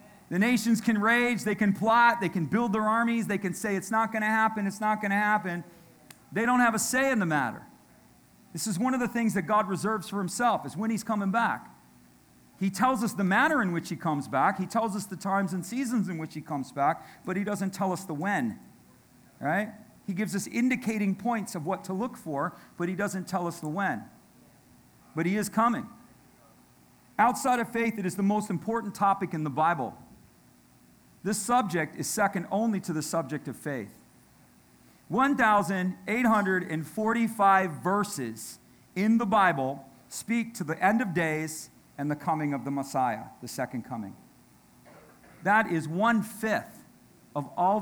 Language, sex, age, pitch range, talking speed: English, male, 40-59, 160-220 Hz, 185 wpm